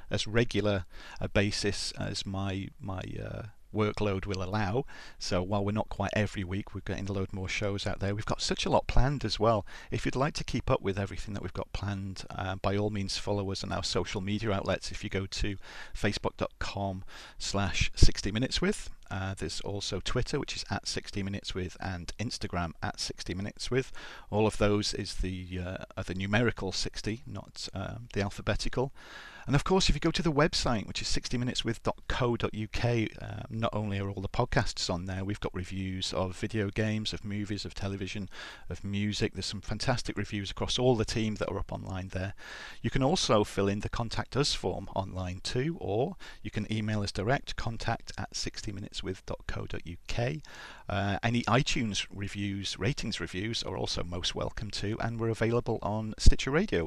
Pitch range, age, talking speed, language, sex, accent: 95-110 Hz, 40-59, 185 wpm, English, male, British